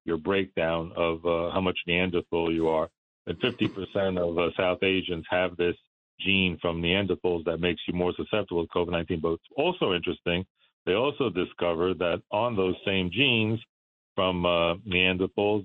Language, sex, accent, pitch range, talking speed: English, male, American, 85-100 Hz, 160 wpm